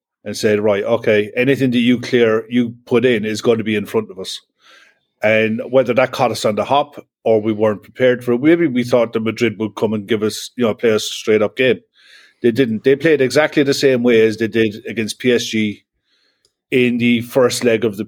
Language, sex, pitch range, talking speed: English, male, 110-135 Hz, 230 wpm